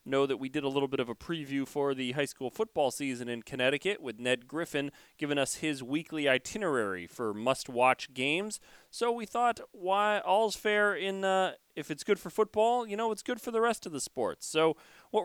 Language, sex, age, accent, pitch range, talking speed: English, male, 30-49, American, 140-180 Hz, 215 wpm